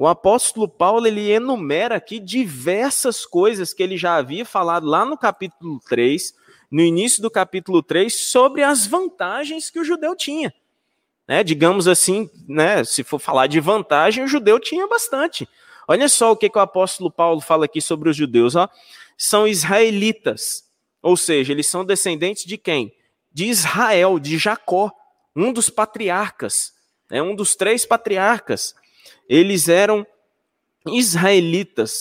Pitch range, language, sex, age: 165-225 Hz, Portuguese, male, 20-39